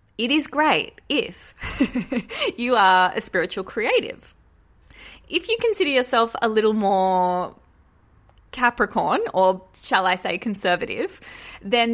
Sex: female